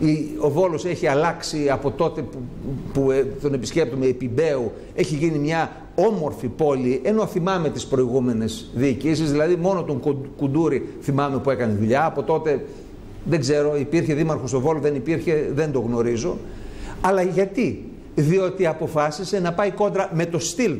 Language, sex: Greek, male